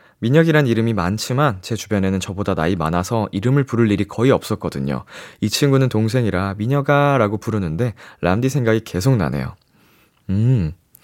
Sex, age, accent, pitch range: male, 20-39, native, 95-130 Hz